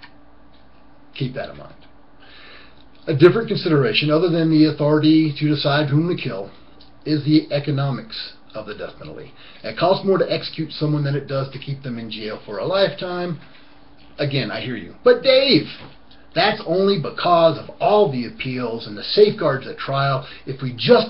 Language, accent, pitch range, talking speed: English, American, 130-160 Hz, 175 wpm